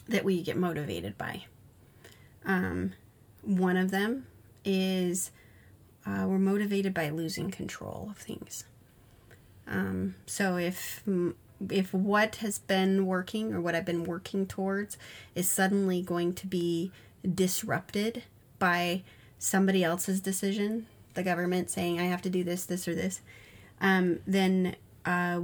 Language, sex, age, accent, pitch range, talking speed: English, female, 30-49, American, 170-195 Hz, 130 wpm